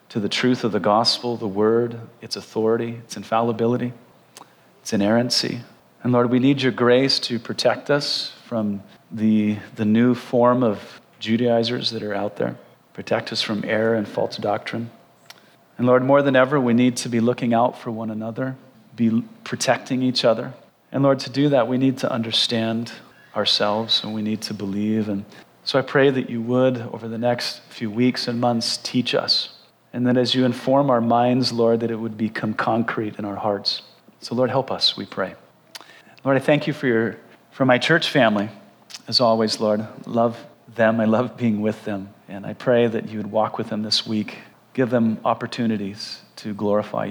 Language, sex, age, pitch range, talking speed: English, male, 40-59, 110-125 Hz, 185 wpm